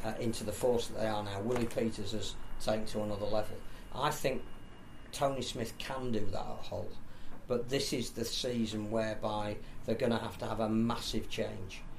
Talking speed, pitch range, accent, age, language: 195 wpm, 105-115 Hz, British, 40-59, English